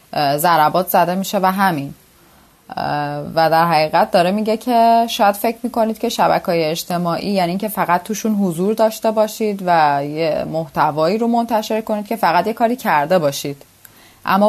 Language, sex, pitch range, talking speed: Persian, female, 155-195 Hz, 150 wpm